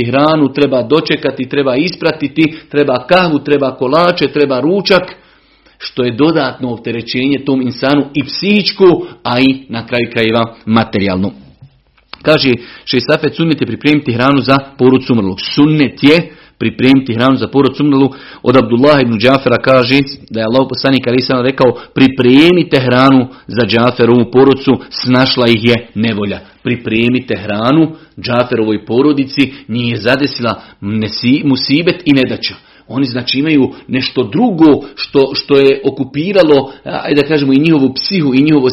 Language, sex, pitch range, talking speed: Croatian, male, 125-145 Hz, 125 wpm